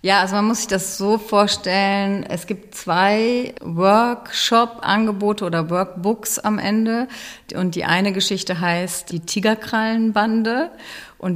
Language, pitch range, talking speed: German, 160-190 Hz, 125 wpm